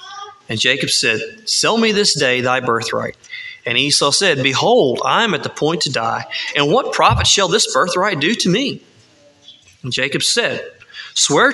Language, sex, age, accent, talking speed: English, male, 30-49, American, 170 wpm